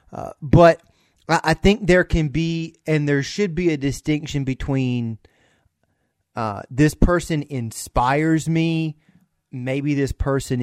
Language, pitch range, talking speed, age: English, 110-145 Hz, 125 wpm, 30-49